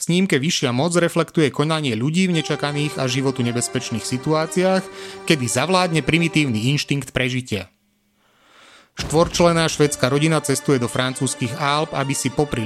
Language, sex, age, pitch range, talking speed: Slovak, male, 30-49, 120-170 Hz, 135 wpm